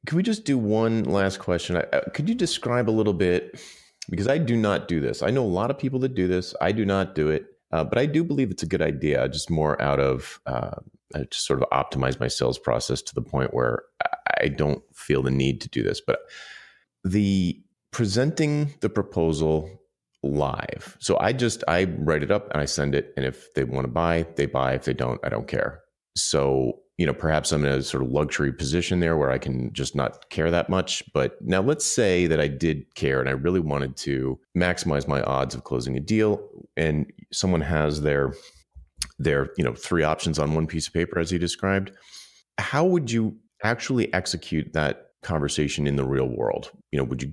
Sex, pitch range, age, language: male, 70-95 Hz, 30-49, English